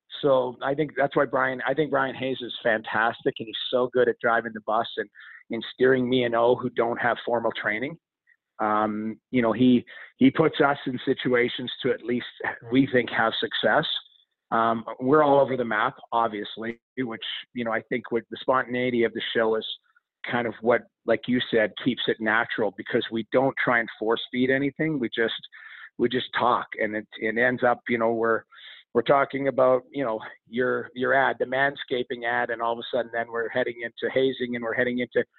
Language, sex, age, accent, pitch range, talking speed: English, male, 40-59, American, 115-130 Hz, 205 wpm